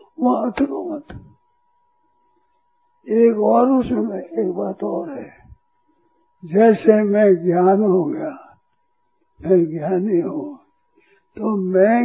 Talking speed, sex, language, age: 95 wpm, male, Hindi, 60-79